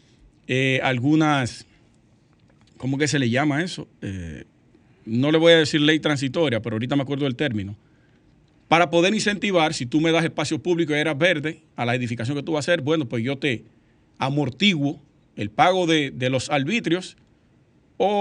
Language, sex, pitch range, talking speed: Spanish, male, 130-160 Hz, 180 wpm